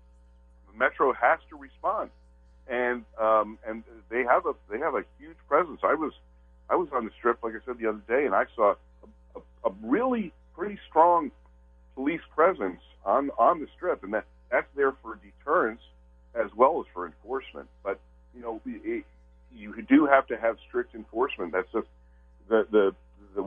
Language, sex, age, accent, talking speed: English, male, 50-69, American, 175 wpm